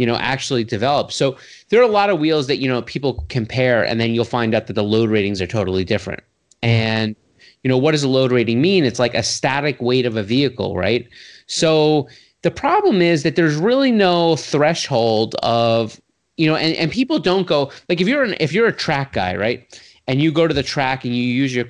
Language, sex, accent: English, male, American